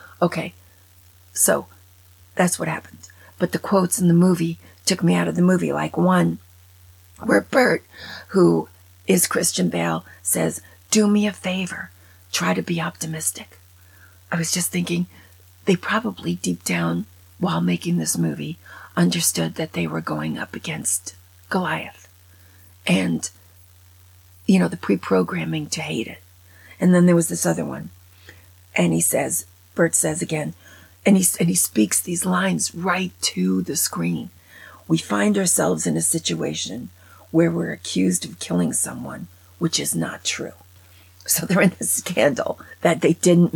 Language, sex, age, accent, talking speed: English, female, 40-59, American, 150 wpm